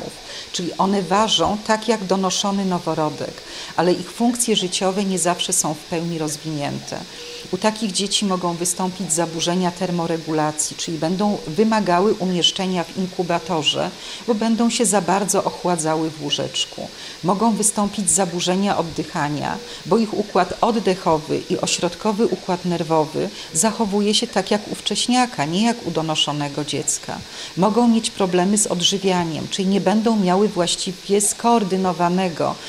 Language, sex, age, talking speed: Polish, female, 40-59, 130 wpm